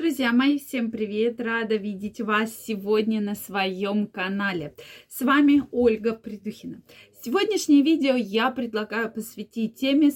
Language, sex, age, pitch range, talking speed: Russian, female, 20-39, 200-250 Hz, 125 wpm